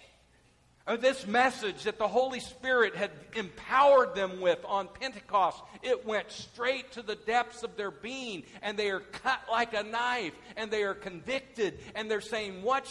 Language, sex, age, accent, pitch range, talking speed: English, male, 50-69, American, 195-245 Hz, 165 wpm